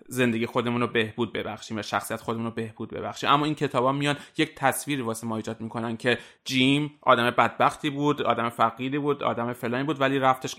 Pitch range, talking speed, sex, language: 115-140 Hz, 200 wpm, male, Persian